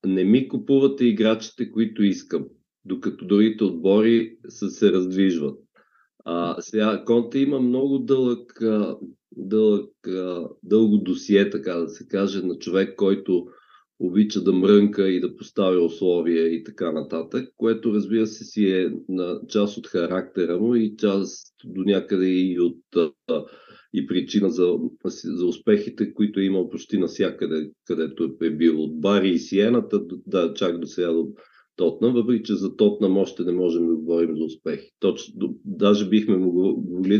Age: 50-69